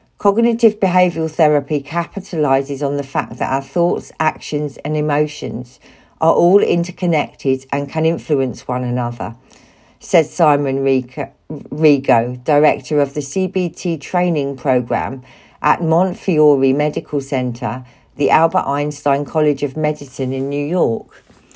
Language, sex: English, female